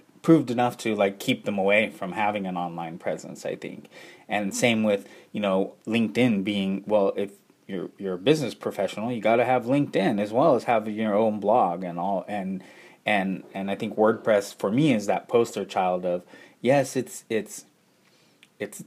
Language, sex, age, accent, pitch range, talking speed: English, male, 20-39, American, 95-110 Hz, 185 wpm